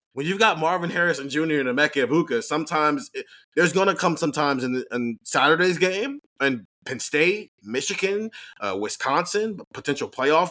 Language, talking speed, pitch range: English, 165 wpm, 130-170 Hz